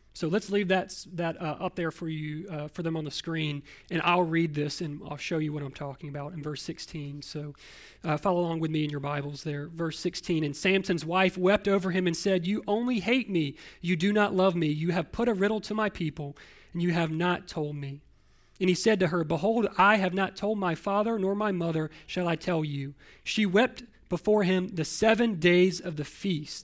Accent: American